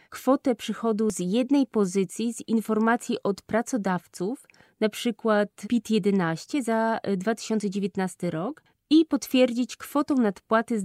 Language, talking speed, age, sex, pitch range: Polish, 110 wpm, 20-39, female, 195-245 Hz